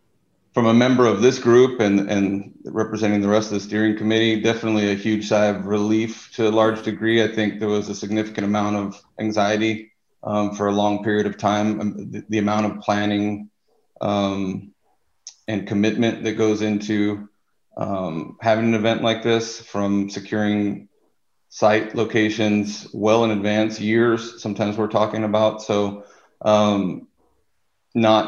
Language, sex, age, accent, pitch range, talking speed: English, male, 40-59, American, 100-110 Hz, 155 wpm